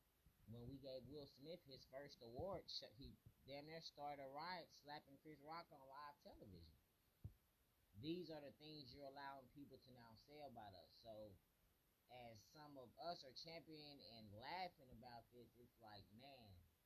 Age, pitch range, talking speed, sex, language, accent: 30-49, 110-140 Hz, 160 wpm, male, English, American